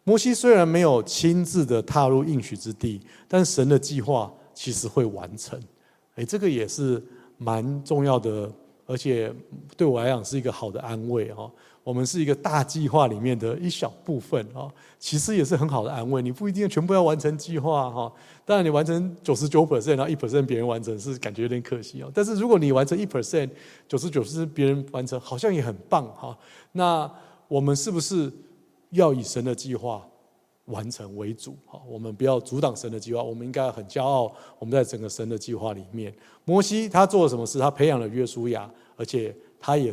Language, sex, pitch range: Chinese, male, 115-155 Hz